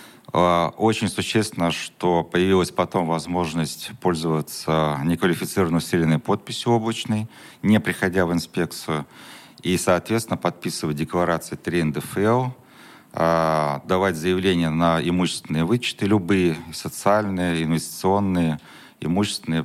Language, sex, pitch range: Russian, male, 80-95 Hz